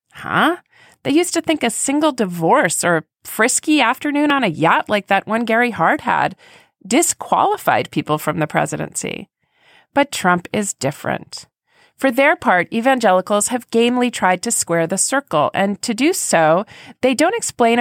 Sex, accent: female, American